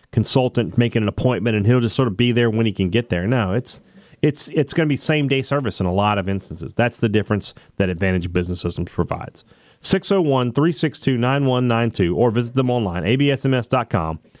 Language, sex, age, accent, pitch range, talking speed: English, male, 40-59, American, 95-130 Hz, 180 wpm